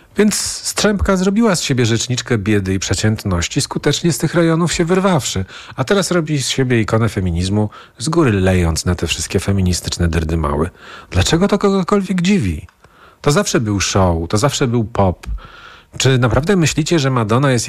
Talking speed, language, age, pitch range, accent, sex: 165 wpm, Polish, 40-59, 100-155 Hz, native, male